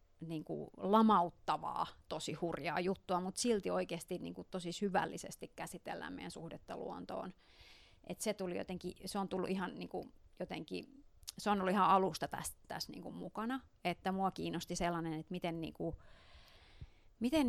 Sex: female